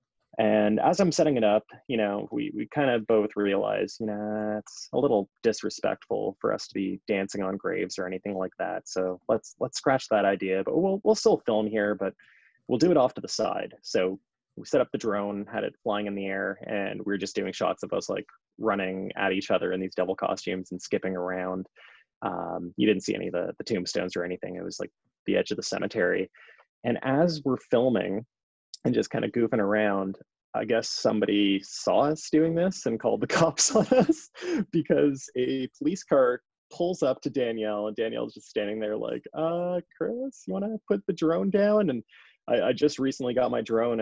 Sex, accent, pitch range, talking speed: male, American, 100-160 Hz, 215 wpm